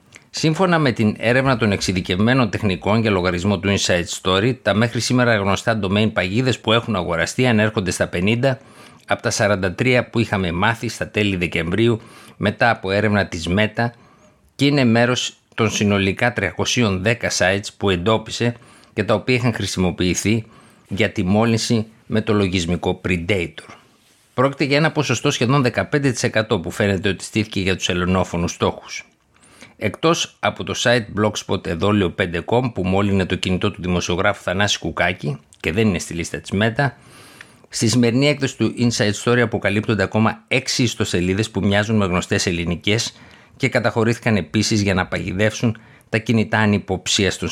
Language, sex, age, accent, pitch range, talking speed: Greek, male, 50-69, native, 95-115 Hz, 150 wpm